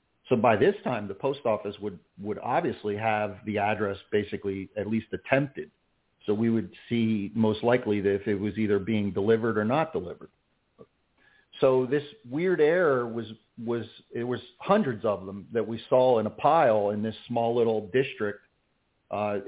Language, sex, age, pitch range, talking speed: English, male, 40-59, 105-125 Hz, 175 wpm